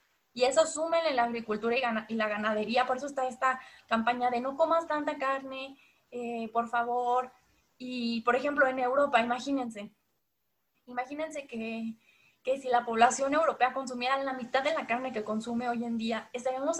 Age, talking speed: 20-39, 170 wpm